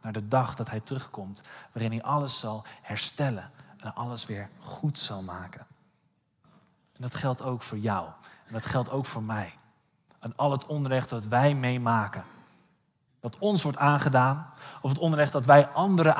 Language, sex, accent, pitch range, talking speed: Dutch, male, Dutch, 125-155 Hz, 170 wpm